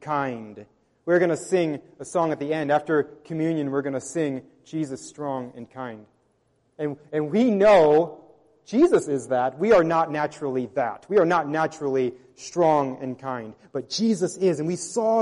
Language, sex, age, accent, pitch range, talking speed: English, male, 30-49, American, 155-225 Hz, 175 wpm